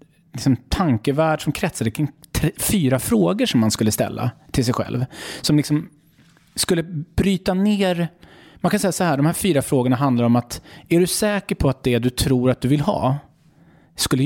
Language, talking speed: English, 180 wpm